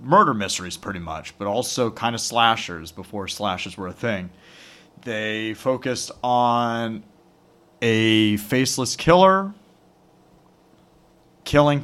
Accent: American